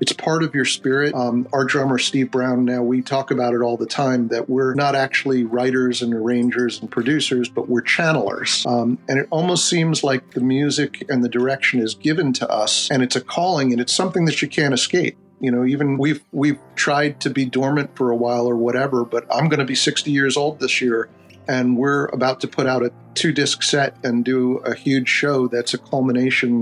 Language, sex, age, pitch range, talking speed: English, male, 40-59, 125-140 Hz, 220 wpm